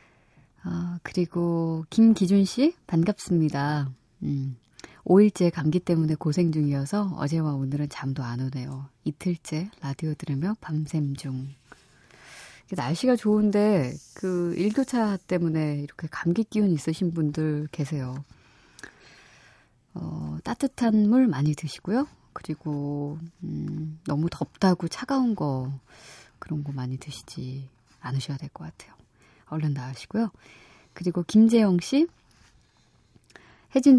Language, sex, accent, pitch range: Korean, female, native, 145-195 Hz